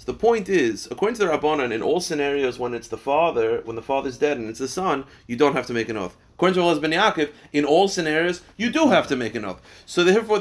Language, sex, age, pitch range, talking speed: English, male, 30-49, 125-175 Hz, 265 wpm